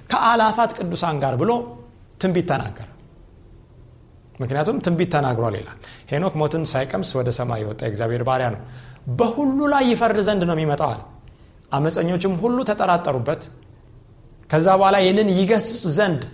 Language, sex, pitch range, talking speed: Amharic, male, 125-180 Hz, 120 wpm